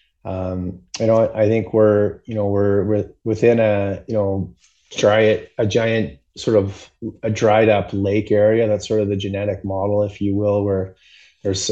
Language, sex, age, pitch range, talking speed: English, male, 30-49, 100-110 Hz, 180 wpm